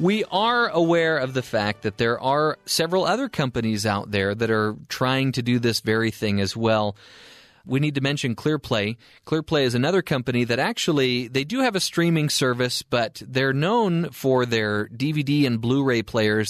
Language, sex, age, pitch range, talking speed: English, male, 30-49, 110-140 Hz, 180 wpm